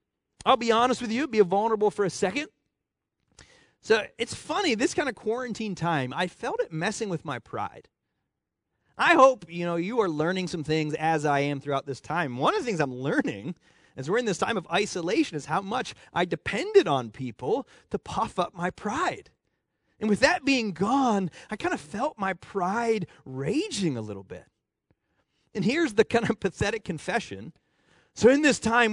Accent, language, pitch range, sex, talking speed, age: American, English, 175-250 Hz, male, 190 wpm, 30-49